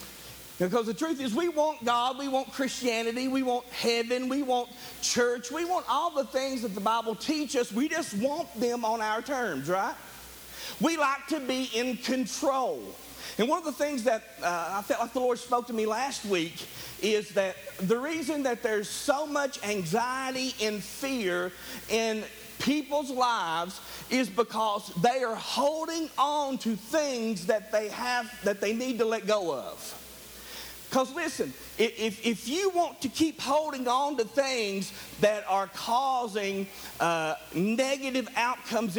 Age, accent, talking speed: 50-69, American, 165 wpm